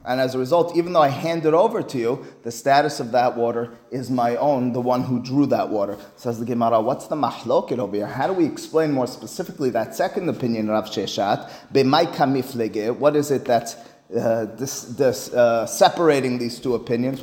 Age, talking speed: 30-49, 200 wpm